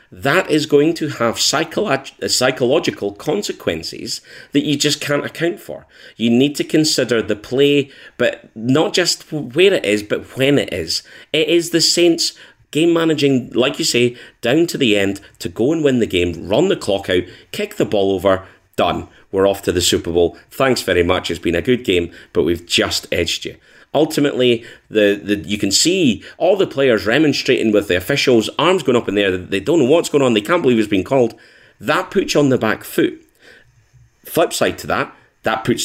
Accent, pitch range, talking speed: British, 100-145 Hz, 200 wpm